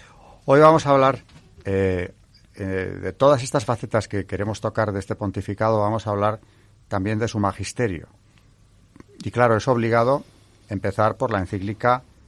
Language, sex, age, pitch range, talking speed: Spanish, male, 40-59, 95-115 Hz, 150 wpm